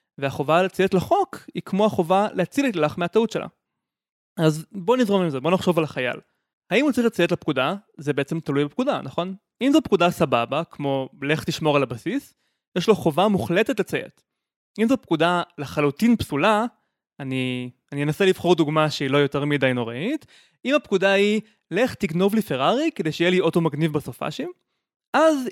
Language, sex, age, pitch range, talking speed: Hebrew, male, 20-39, 150-215 Hz, 170 wpm